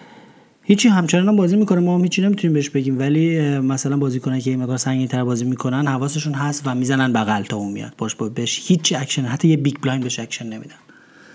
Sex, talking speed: male, 210 wpm